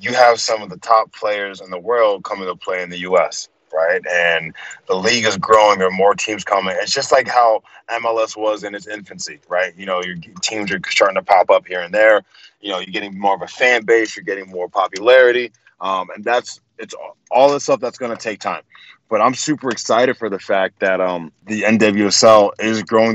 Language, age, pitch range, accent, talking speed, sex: English, 20-39, 95-110 Hz, American, 230 wpm, male